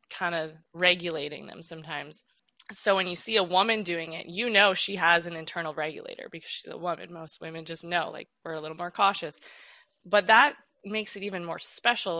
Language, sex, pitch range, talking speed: English, female, 160-185 Hz, 200 wpm